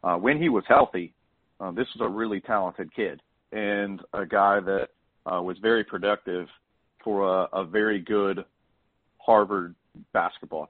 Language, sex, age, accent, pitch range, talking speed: English, male, 40-59, American, 95-110 Hz, 150 wpm